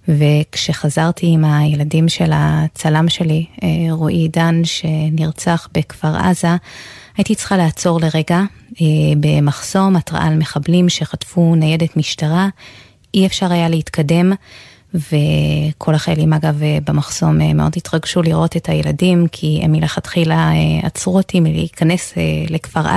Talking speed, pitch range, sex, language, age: 110 wpm, 150-175 Hz, female, Hebrew, 20-39